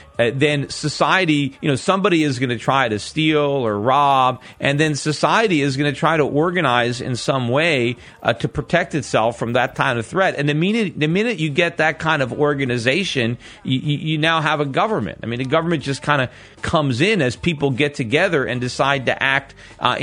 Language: English